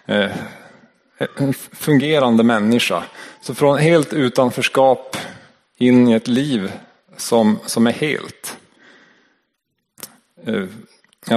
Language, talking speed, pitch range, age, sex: Swedish, 90 wpm, 115-135 Hz, 30-49, male